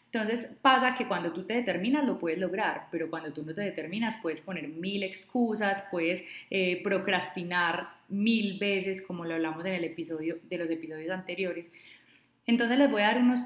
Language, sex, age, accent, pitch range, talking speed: Spanish, female, 20-39, Colombian, 165-200 Hz, 185 wpm